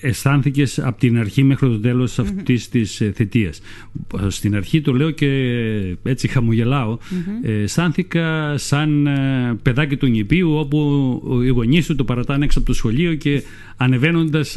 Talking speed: 135 wpm